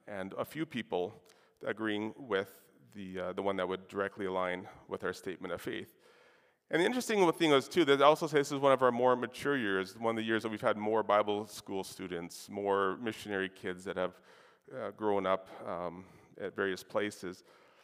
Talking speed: 200 wpm